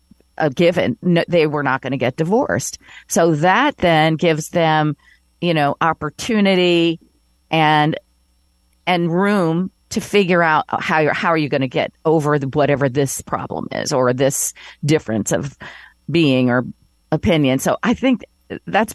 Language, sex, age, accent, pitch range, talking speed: English, female, 40-59, American, 150-185 Hz, 155 wpm